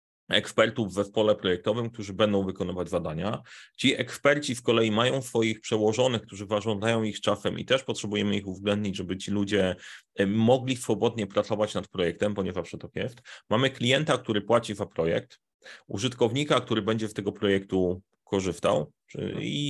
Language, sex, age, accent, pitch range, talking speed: Polish, male, 30-49, native, 105-125 Hz, 150 wpm